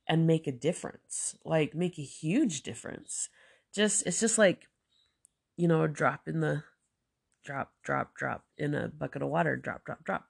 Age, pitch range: 20-39, 135-165 Hz